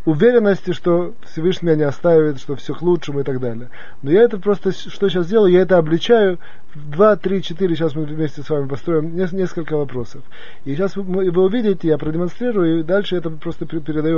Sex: male